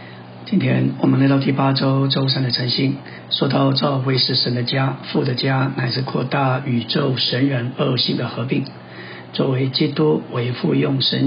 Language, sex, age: Chinese, male, 60-79